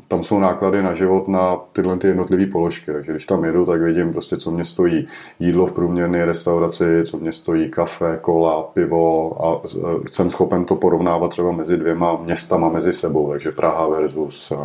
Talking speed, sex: 175 wpm, male